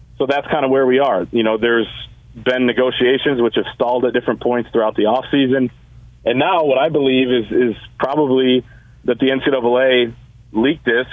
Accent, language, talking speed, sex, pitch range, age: American, English, 185 wpm, male, 115-130 Hz, 30-49